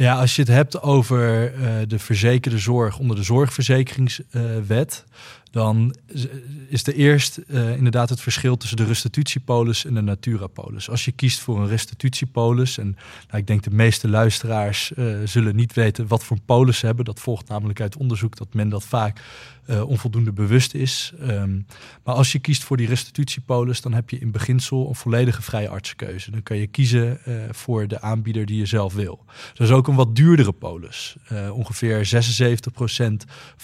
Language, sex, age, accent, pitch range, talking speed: Dutch, male, 20-39, Dutch, 110-130 Hz, 185 wpm